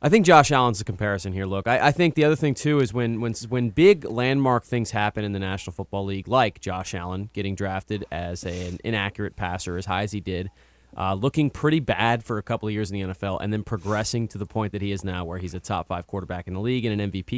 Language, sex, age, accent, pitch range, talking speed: English, male, 30-49, American, 95-125 Hz, 260 wpm